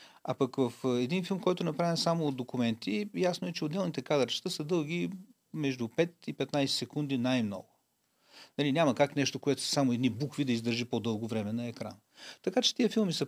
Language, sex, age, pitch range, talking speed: Bulgarian, male, 40-59, 120-165 Hz, 200 wpm